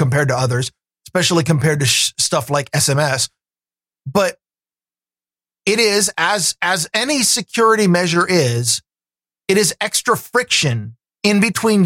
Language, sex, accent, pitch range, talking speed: English, male, American, 120-185 Hz, 120 wpm